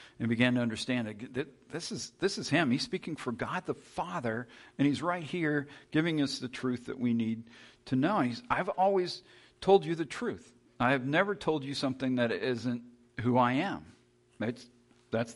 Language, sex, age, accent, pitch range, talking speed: English, male, 50-69, American, 115-150 Hz, 190 wpm